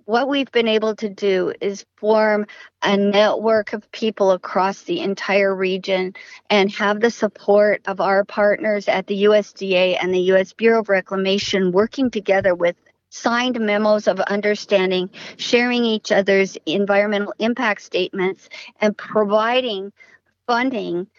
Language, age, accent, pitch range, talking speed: English, 50-69, American, 195-230 Hz, 135 wpm